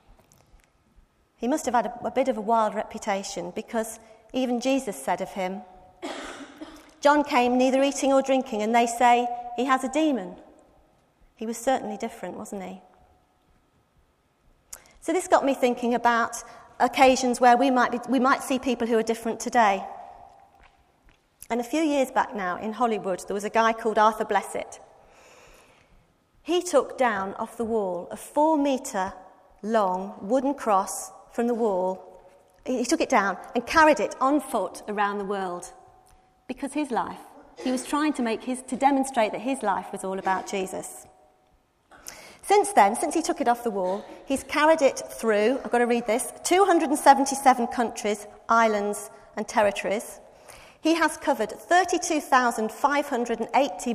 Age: 40-59